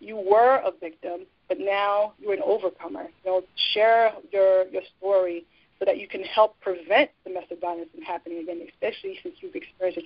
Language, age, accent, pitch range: English, 30-49, American, 185-225 Hz